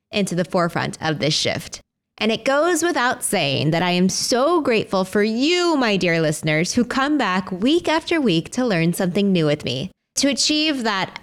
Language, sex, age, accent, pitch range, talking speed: English, female, 20-39, American, 175-250 Hz, 190 wpm